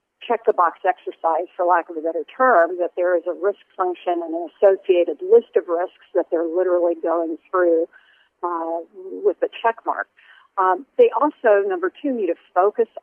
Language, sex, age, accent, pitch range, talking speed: English, female, 50-69, American, 170-240 Hz, 175 wpm